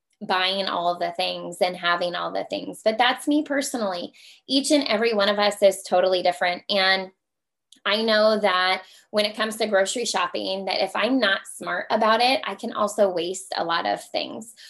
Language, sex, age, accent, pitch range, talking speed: English, female, 20-39, American, 185-230 Hz, 195 wpm